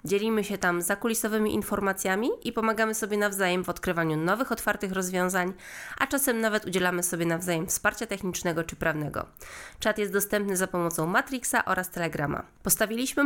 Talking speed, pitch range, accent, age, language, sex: 150 wpm, 175-220 Hz, native, 20-39, Polish, female